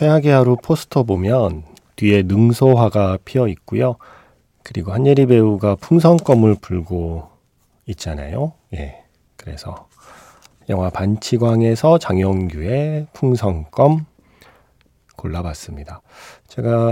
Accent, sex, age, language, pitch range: native, male, 40-59, Korean, 95-130 Hz